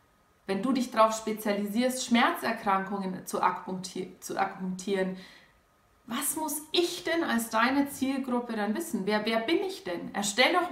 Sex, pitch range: female, 205-275 Hz